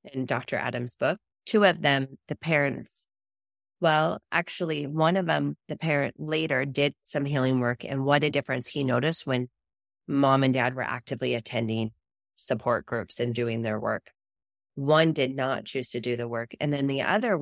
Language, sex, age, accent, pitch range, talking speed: English, female, 30-49, American, 125-160 Hz, 180 wpm